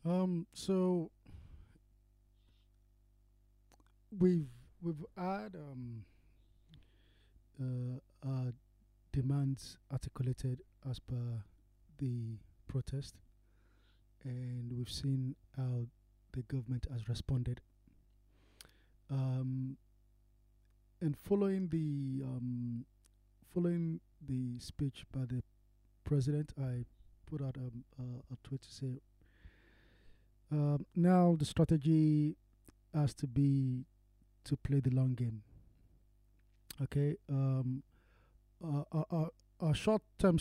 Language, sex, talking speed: English, male, 90 wpm